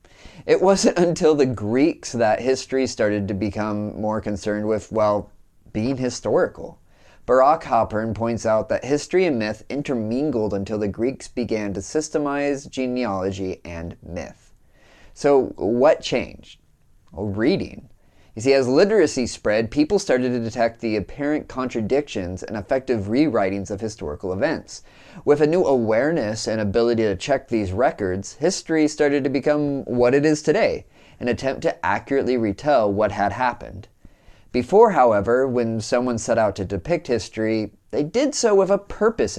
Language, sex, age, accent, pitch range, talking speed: English, male, 30-49, American, 105-140 Hz, 150 wpm